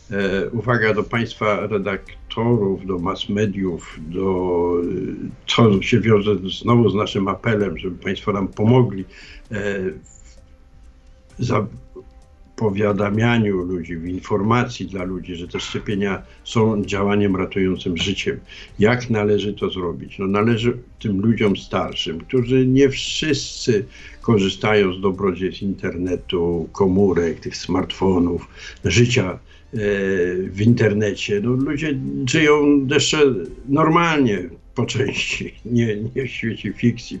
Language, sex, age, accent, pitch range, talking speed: Polish, male, 70-89, native, 95-120 Hz, 110 wpm